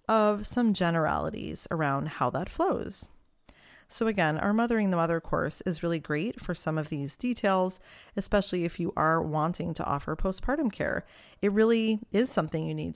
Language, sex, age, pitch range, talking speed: English, female, 30-49, 165-220 Hz, 170 wpm